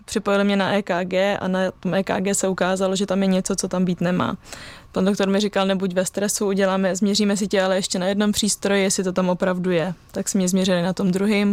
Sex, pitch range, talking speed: female, 185-200 Hz, 240 wpm